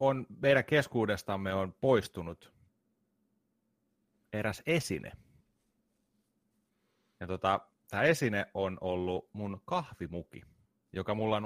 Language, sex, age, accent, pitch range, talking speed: Finnish, male, 30-49, native, 95-125 Hz, 90 wpm